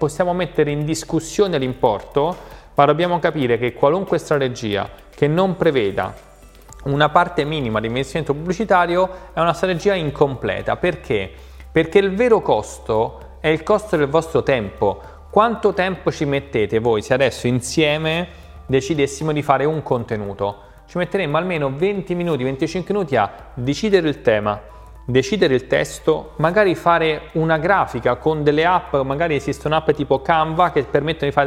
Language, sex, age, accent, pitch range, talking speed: Italian, male, 30-49, native, 130-175 Hz, 150 wpm